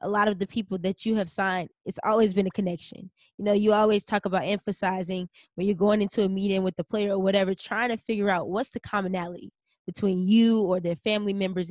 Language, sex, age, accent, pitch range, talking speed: English, female, 10-29, American, 190-220 Hz, 230 wpm